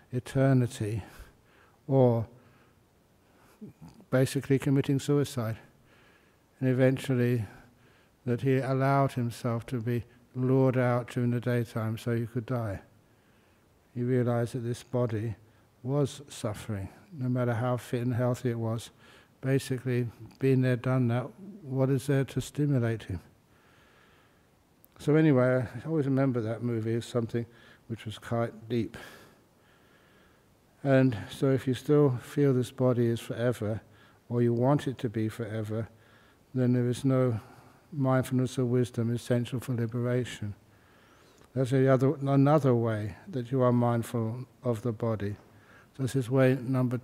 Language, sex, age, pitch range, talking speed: English, male, 60-79, 115-130 Hz, 130 wpm